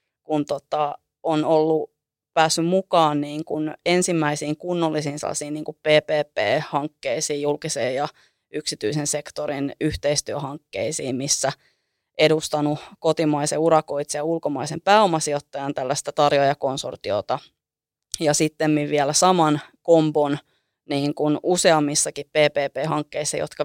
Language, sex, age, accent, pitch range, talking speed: Finnish, female, 30-49, native, 145-160 Hz, 75 wpm